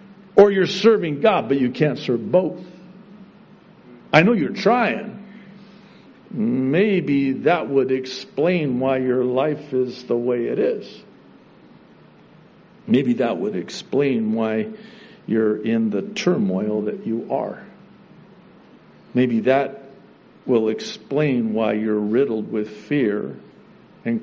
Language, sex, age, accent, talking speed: English, male, 60-79, American, 115 wpm